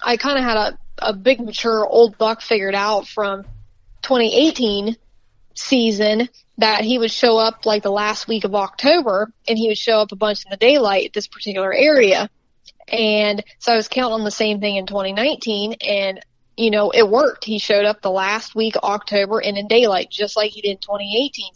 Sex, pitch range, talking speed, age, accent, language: female, 210-235 Hz, 200 wpm, 20-39, American, English